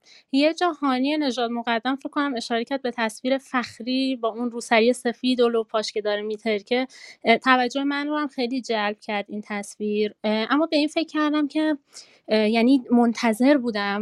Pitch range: 205-255 Hz